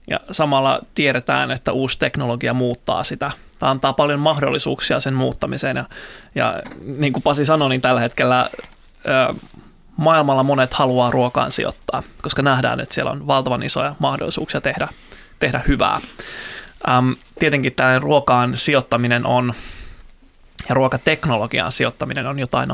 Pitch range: 120-140 Hz